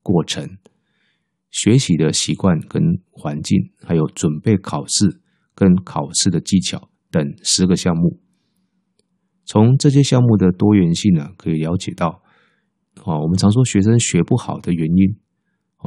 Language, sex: Chinese, male